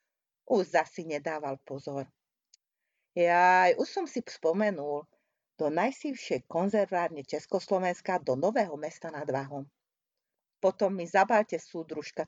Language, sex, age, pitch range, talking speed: Hungarian, female, 40-59, 150-190 Hz, 110 wpm